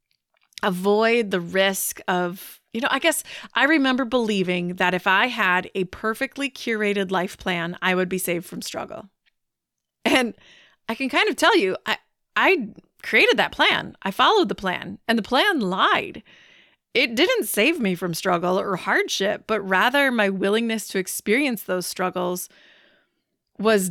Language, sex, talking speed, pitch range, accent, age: English, female, 160 wpm, 185-235 Hz, American, 30-49